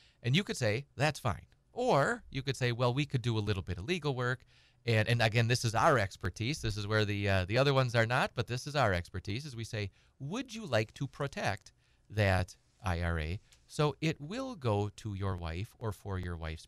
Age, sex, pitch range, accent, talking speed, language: 30-49, male, 95-135 Hz, American, 225 wpm, English